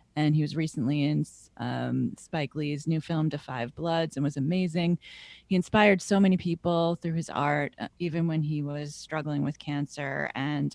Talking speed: 180 wpm